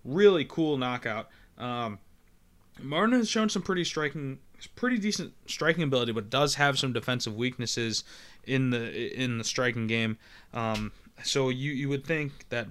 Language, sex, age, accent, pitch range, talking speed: English, male, 20-39, American, 110-135 Hz, 155 wpm